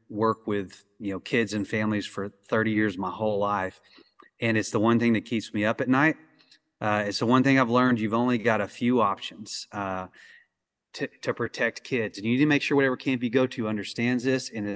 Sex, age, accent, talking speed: male, 30-49, American, 230 wpm